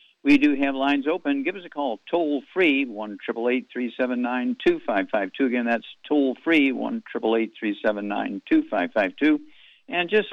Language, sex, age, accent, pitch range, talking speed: English, male, 50-69, American, 110-145 Hz, 225 wpm